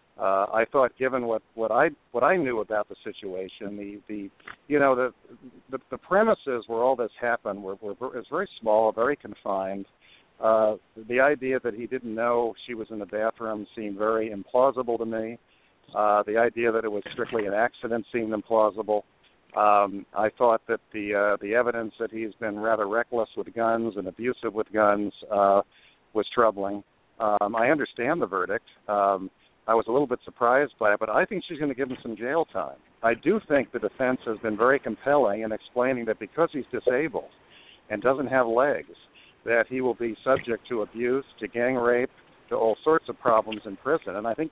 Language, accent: English, American